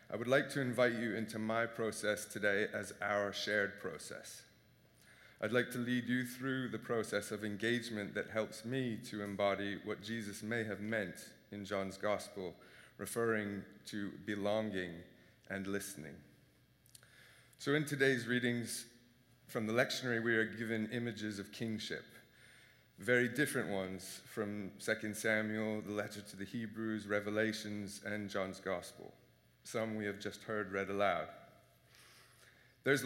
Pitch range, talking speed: 105-120 Hz, 140 wpm